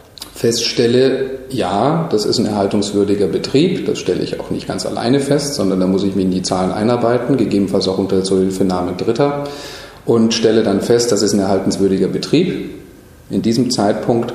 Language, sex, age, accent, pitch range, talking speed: German, male, 40-59, German, 100-130 Hz, 170 wpm